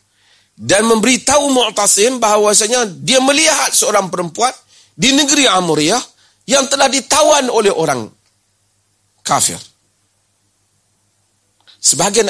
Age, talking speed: 40-59, 90 wpm